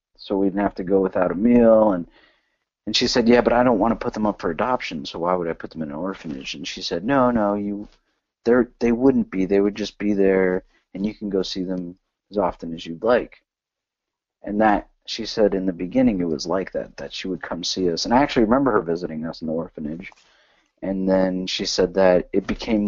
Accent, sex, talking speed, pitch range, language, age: American, male, 245 wpm, 90-105 Hz, English, 40-59